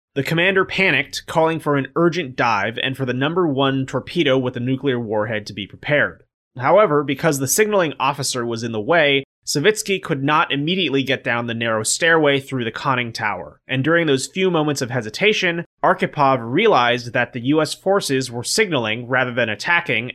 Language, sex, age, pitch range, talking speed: English, male, 30-49, 125-160 Hz, 180 wpm